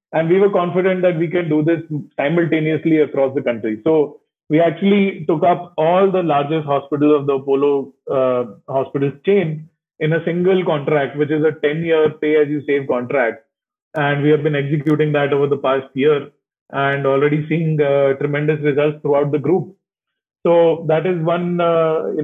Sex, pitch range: male, 150-175 Hz